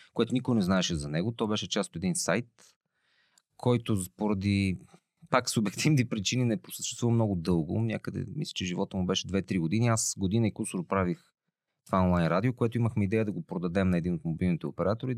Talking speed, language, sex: 190 wpm, Bulgarian, male